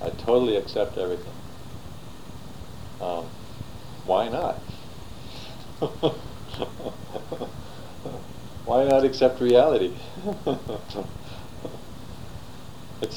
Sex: male